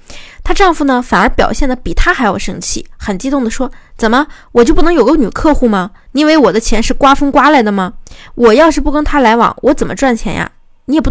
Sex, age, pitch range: female, 20-39, 215-285 Hz